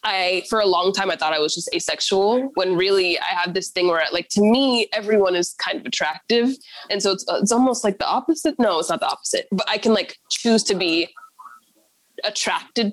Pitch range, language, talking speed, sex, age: 185-250 Hz, English, 220 wpm, female, 20-39